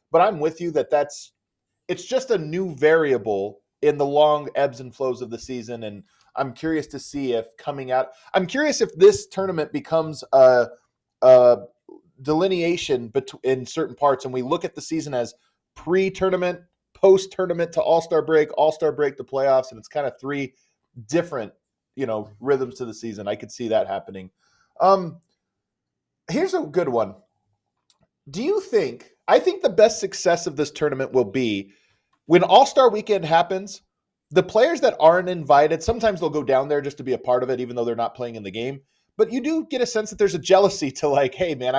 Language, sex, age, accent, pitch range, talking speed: English, male, 30-49, American, 130-190 Hz, 190 wpm